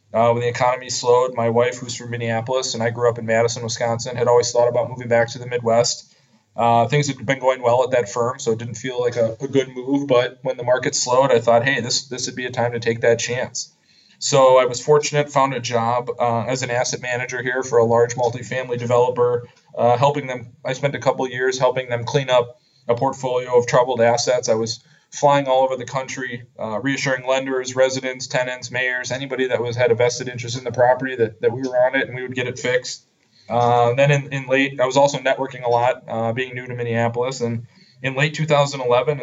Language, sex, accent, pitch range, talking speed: English, male, American, 120-130 Hz, 235 wpm